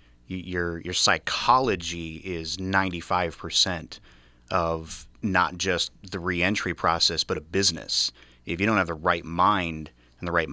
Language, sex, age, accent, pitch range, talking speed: English, male, 30-49, American, 80-95 Hz, 135 wpm